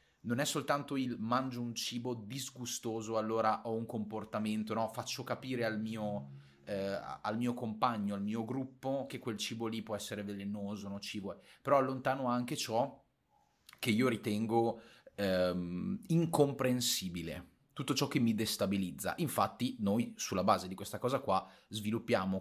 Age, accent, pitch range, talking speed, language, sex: 30-49, native, 100-125 Hz, 155 wpm, Italian, male